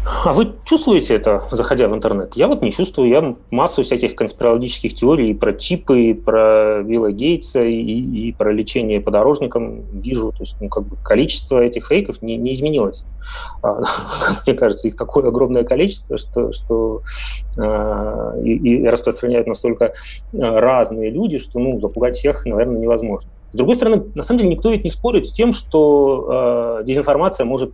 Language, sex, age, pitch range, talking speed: Russian, male, 30-49, 110-145 Hz, 160 wpm